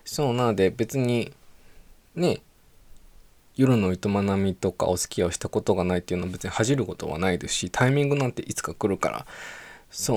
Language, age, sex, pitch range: Japanese, 20-39, male, 100-150 Hz